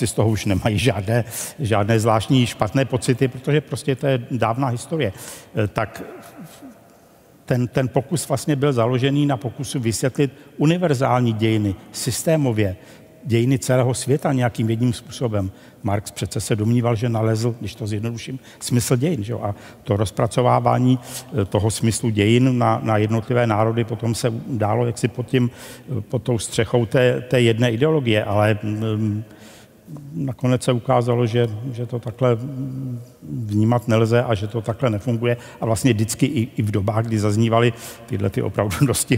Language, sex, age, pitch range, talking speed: Czech, male, 50-69, 110-125 Hz, 150 wpm